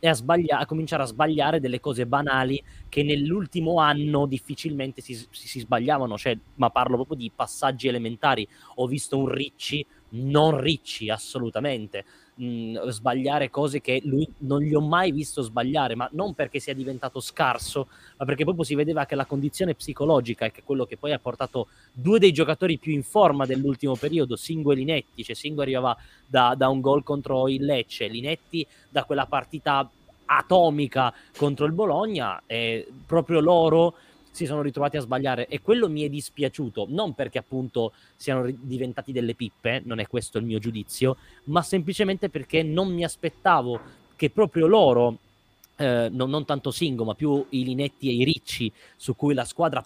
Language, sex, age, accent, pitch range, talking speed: Italian, male, 20-39, native, 120-155 Hz, 175 wpm